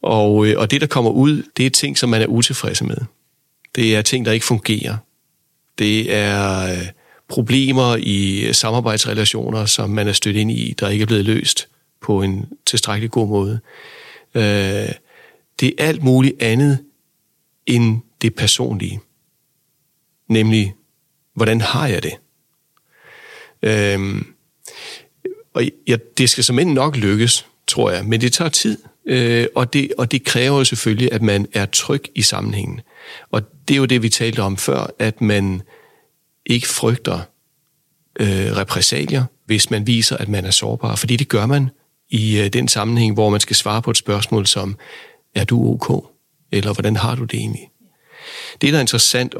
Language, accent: Danish, native